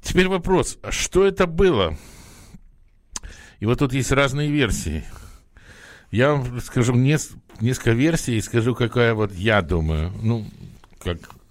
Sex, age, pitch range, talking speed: male, 60-79, 95-130 Hz, 125 wpm